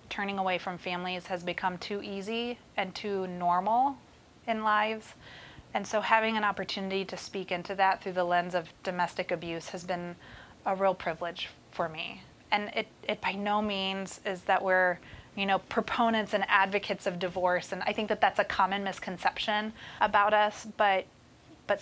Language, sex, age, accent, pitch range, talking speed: English, female, 20-39, American, 180-200 Hz, 175 wpm